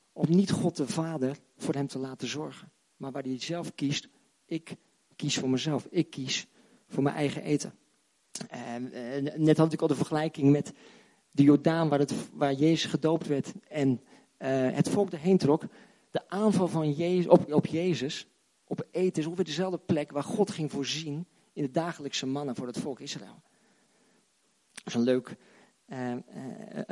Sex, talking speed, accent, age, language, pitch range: male, 180 wpm, Dutch, 40-59, Dutch, 140-180 Hz